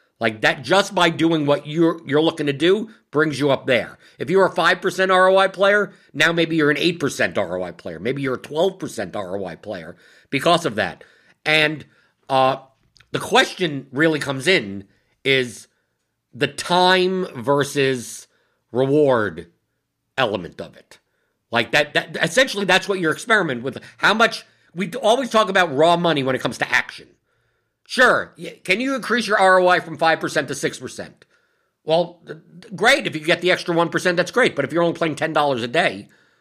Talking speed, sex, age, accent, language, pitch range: 170 wpm, male, 50-69, American, English, 130-180 Hz